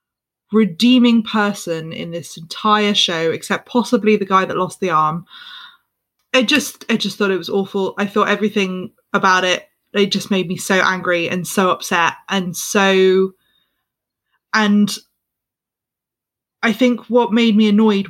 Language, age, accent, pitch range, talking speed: English, 20-39, British, 180-210 Hz, 150 wpm